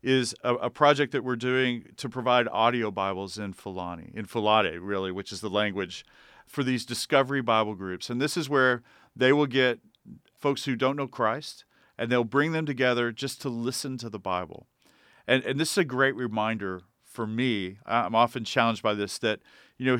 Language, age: English, 40-59